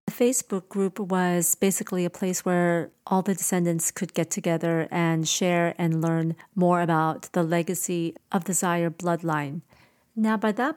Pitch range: 170-200 Hz